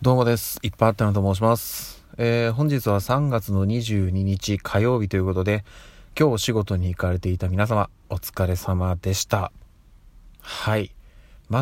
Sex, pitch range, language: male, 95-115 Hz, Japanese